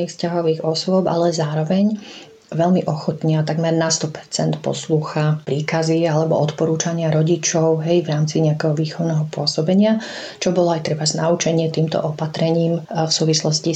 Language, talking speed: Slovak, 130 wpm